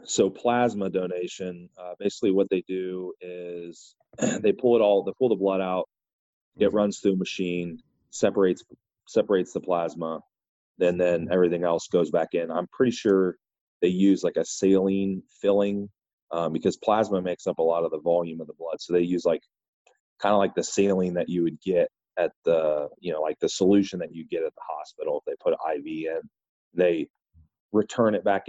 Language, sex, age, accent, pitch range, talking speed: English, male, 30-49, American, 85-105 Hz, 190 wpm